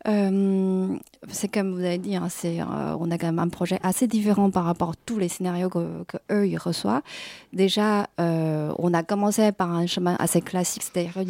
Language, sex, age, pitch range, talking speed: French, female, 30-49, 180-220 Hz, 200 wpm